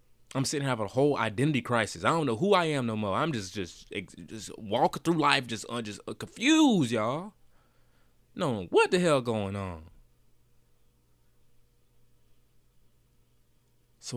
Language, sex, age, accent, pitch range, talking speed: English, male, 20-39, American, 80-115 Hz, 150 wpm